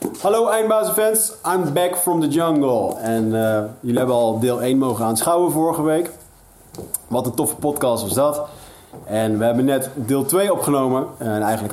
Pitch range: 105-130 Hz